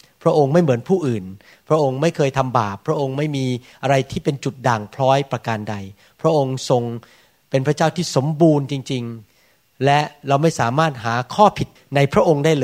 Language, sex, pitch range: Thai, male, 130-160 Hz